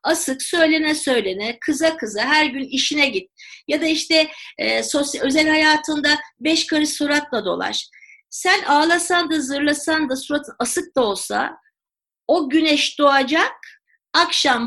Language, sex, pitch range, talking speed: Turkish, female, 275-355 Hz, 135 wpm